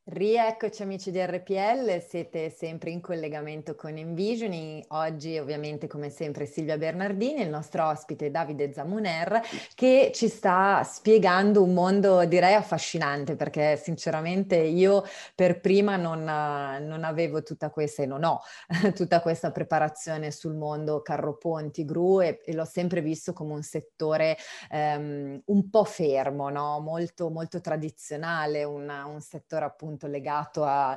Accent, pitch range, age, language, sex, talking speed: native, 145-170 Hz, 30-49, Italian, female, 135 wpm